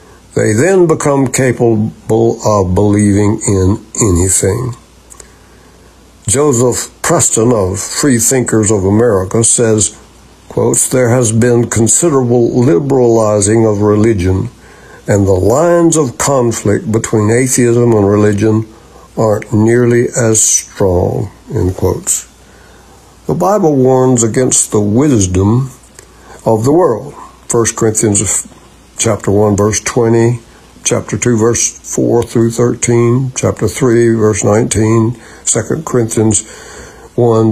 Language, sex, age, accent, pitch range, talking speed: English, male, 60-79, American, 105-125 Hz, 100 wpm